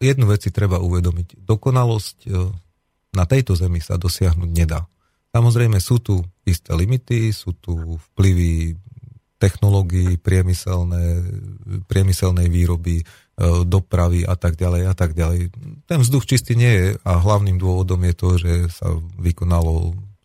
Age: 40-59